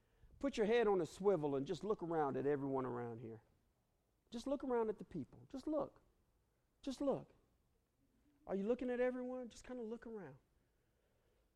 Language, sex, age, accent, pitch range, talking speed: English, male, 50-69, American, 240-355 Hz, 175 wpm